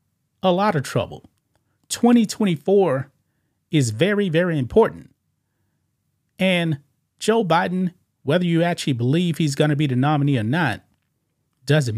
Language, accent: English, American